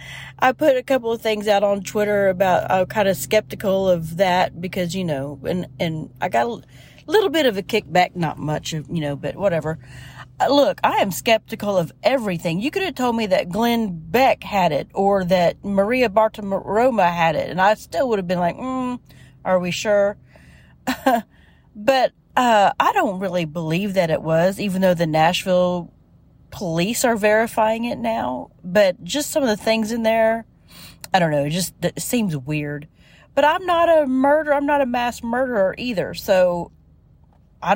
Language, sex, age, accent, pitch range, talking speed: English, female, 40-59, American, 165-230 Hz, 180 wpm